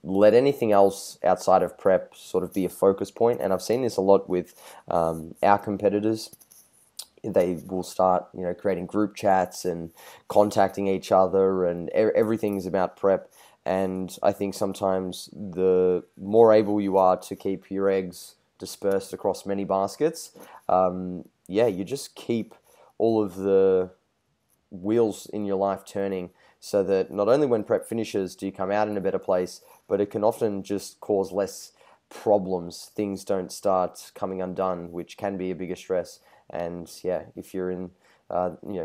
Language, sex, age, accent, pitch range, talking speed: English, male, 20-39, Australian, 90-100 Hz, 170 wpm